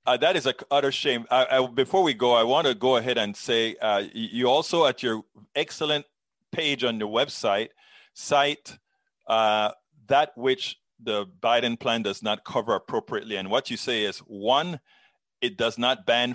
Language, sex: English, male